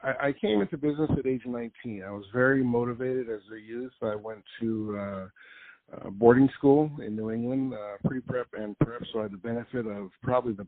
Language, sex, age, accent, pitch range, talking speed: English, male, 50-69, American, 105-120 Hz, 200 wpm